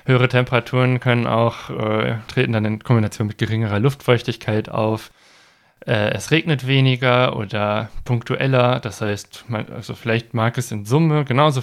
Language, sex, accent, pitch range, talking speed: German, male, German, 110-140 Hz, 150 wpm